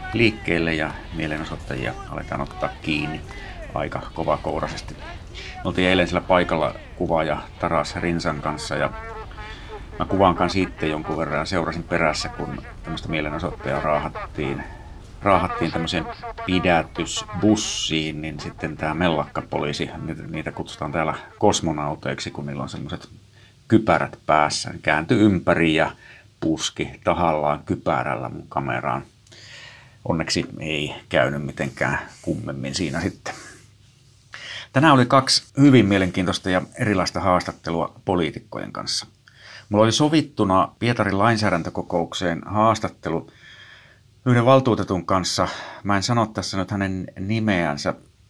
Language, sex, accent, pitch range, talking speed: Finnish, male, native, 80-105 Hz, 105 wpm